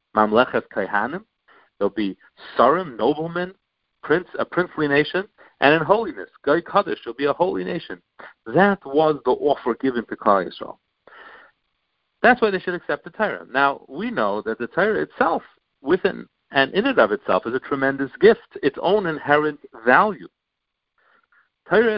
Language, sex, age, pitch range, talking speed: English, male, 50-69, 110-180 Hz, 150 wpm